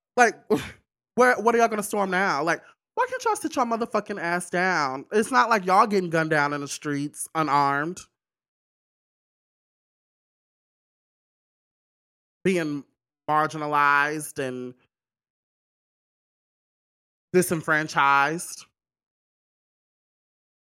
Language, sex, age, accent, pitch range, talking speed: English, male, 20-39, American, 145-210 Hz, 95 wpm